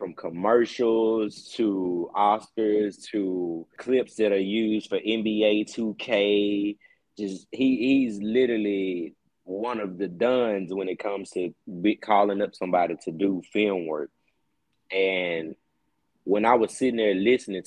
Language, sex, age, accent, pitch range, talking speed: English, male, 20-39, American, 90-110 Hz, 130 wpm